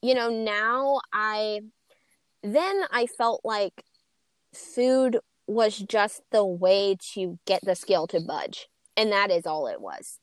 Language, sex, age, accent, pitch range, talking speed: English, female, 20-39, American, 200-265 Hz, 145 wpm